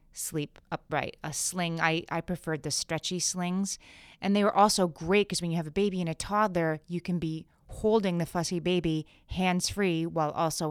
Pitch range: 155-190 Hz